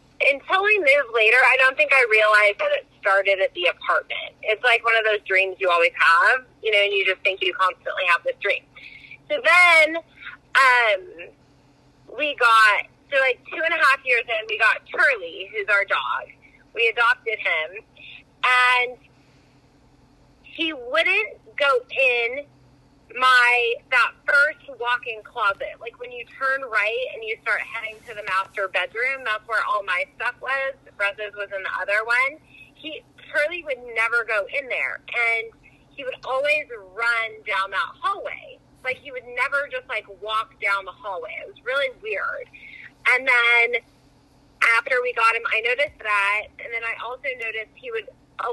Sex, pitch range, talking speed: female, 205-315 Hz, 170 wpm